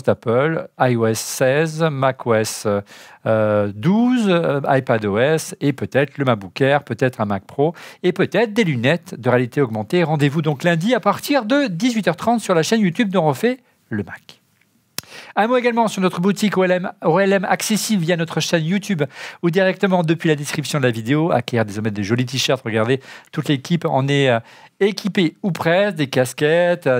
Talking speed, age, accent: 165 wpm, 40-59, French